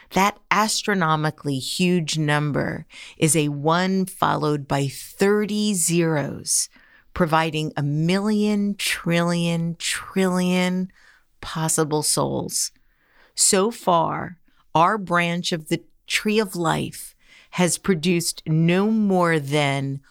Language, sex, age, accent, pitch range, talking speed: English, female, 50-69, American, 150-185 Hz, 95 wpm